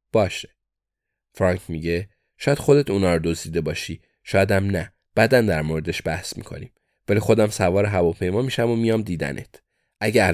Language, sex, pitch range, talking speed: Persian, male, 90-115 Hz, 150 wpm